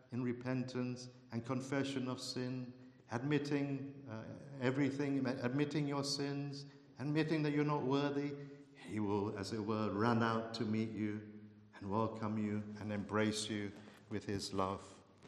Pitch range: 115-145 Hz